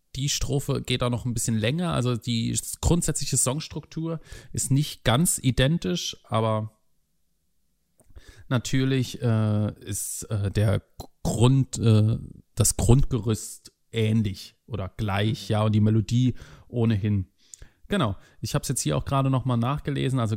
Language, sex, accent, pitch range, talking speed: German, male, German, 110-130 Hz, 135 wpm